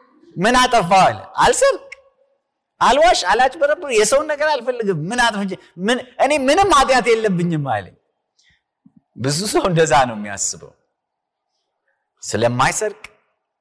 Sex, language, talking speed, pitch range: male, Amharic, 95 wpm, 160-250 Hz